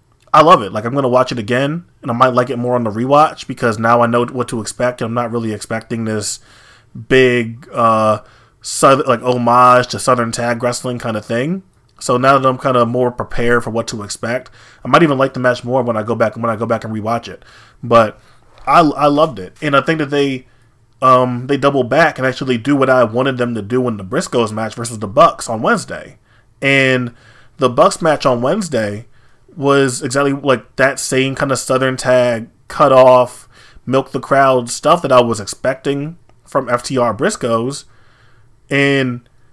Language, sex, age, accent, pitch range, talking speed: English, male, 20-39, American, 115-130 Hz, 205 wpm